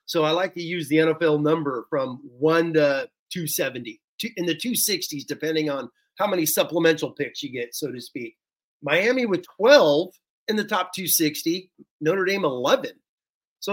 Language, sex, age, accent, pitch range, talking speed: English, male, 30-49, American, 145-185 Hz, 160 wpm